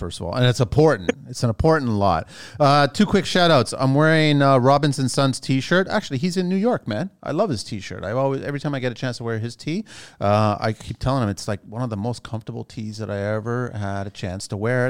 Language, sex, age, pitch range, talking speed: English, male, 30-49, 115-145 Hz, 260 wpm